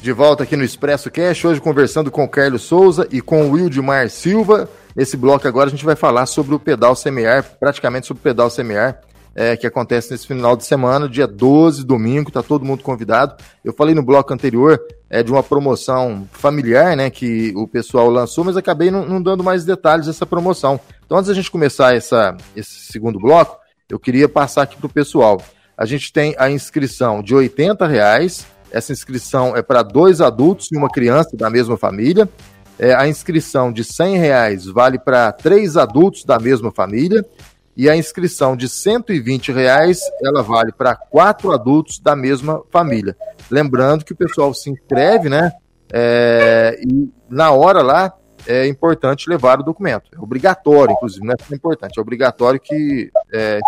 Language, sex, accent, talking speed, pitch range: Portuguese, male, Brazilian, 185 wpm, 120-155 Hz